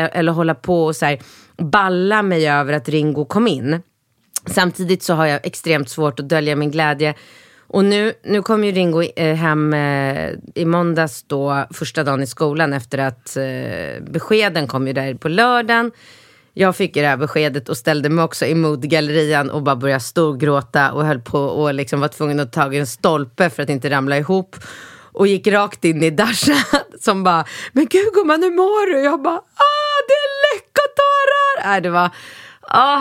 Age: 30-49